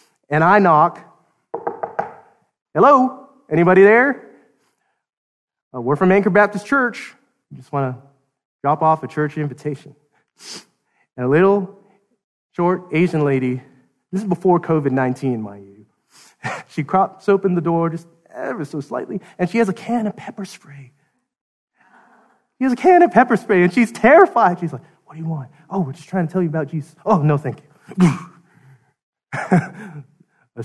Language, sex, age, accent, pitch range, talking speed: English, male, 30-49, American, 135-190 Hz, 155 wpm